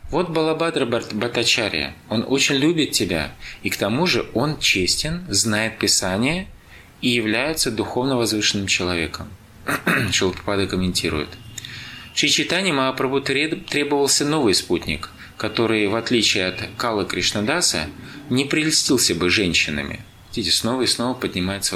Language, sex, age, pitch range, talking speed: Russian, male, 20-39, 95-135 Hz, 115 wpm